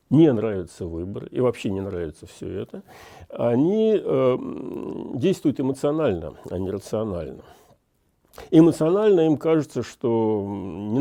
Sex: male